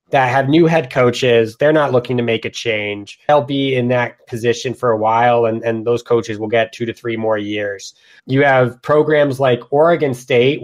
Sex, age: male, 20-39